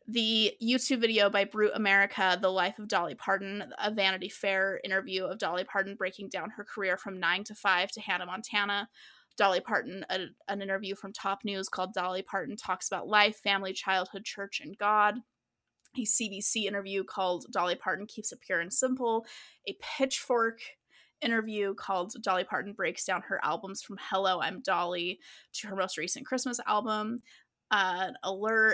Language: English